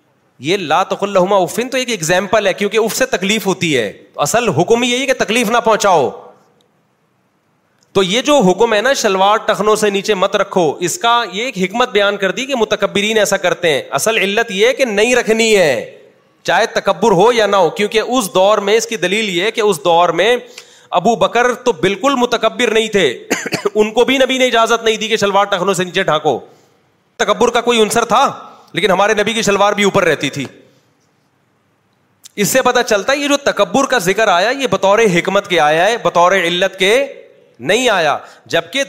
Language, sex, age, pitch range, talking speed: Urdu, male, 30-49, 195-245 Hz, 190 wpm